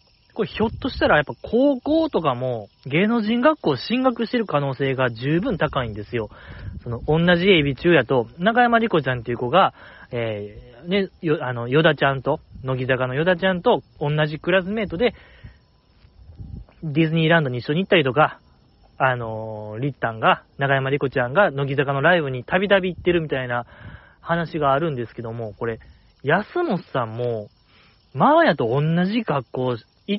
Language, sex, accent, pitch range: Japanese, male, native, 125-180 Hz